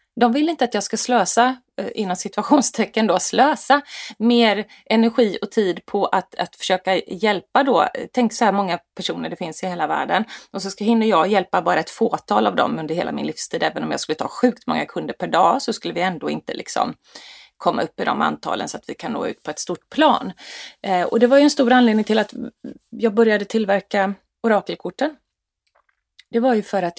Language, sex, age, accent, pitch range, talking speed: Swedish, female, 30-49, native, 185-245 Hz, 215 wpm